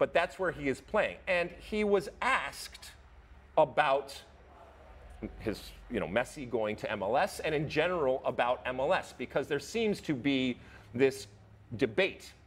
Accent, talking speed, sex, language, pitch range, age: American, 145 wpm, male, English, 100-140 Hz, 40-59